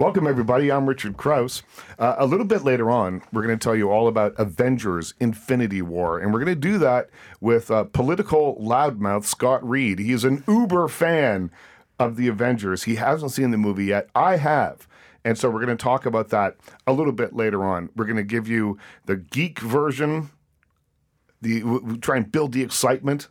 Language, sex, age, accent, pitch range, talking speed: English, male, 40-59, American, 100-130 Hz, 195 wpm